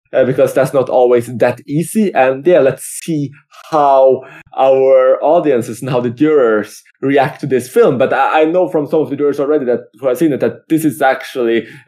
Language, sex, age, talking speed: English, male, 20-39, 205 wpm